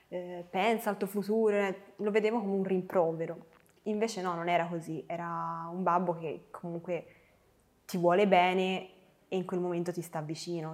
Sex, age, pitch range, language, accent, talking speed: female, 20-39, 170-200 Hz, Italian, native, 160 wpm